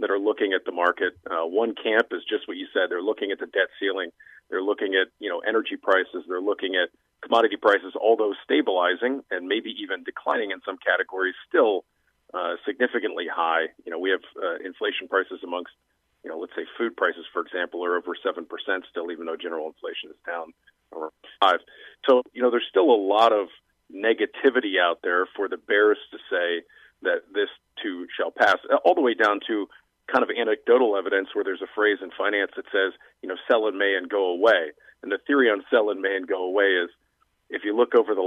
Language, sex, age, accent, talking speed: English, male, 40-59, American, 215 wpm